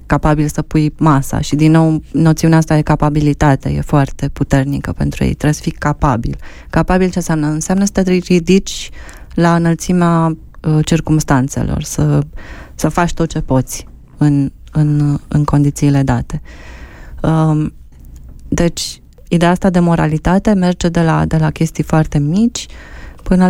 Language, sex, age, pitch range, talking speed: Romanian, female, 20-39, 140-170 Hz, 145 wpm